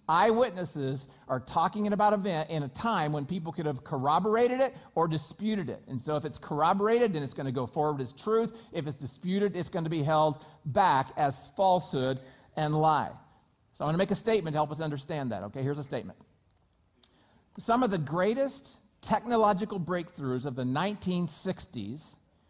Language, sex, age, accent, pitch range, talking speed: English, male, 50-69, American, 145-200 Hz, 185 wpm